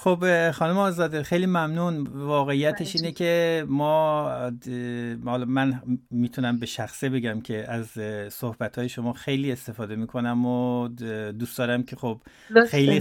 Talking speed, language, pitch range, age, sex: 125 wpm, Persian, 115-135 Hz, 50-69, male